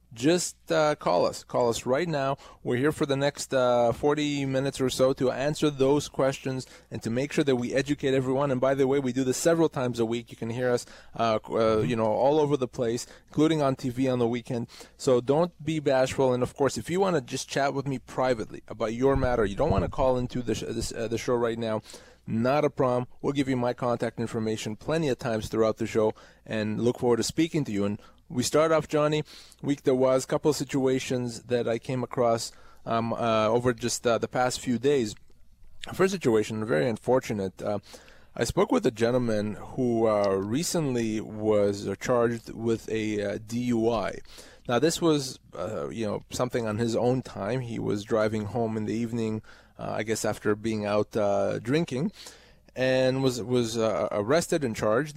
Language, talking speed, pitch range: English, 210 wpm, 115-135 Hz